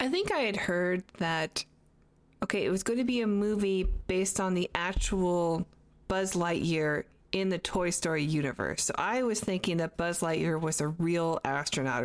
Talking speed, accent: 180 wpm, American